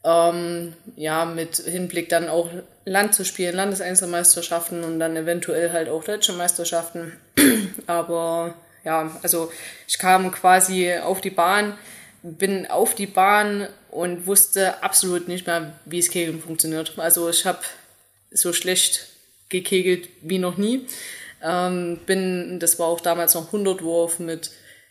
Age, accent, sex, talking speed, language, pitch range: 20-39, German, female, 140 wpm, German, 170-195 Hz